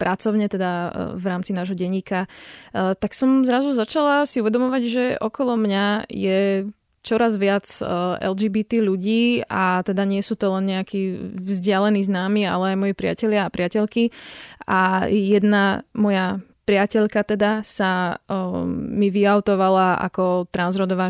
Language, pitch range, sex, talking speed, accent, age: Czech, 190-220 Hz, female, 125 wpm, native, 20-39